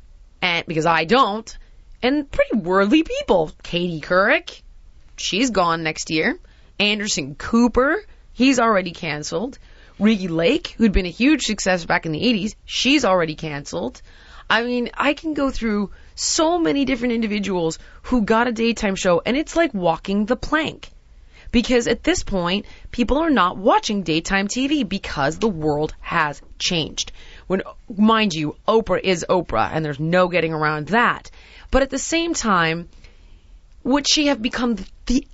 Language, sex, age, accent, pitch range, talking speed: English, female, 30-49, American, 175-255 Hz, 150 wpm